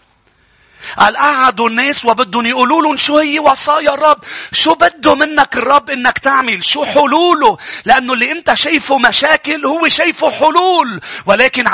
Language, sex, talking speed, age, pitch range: English, male, 130 wpm, 40-59, 205-315 Hz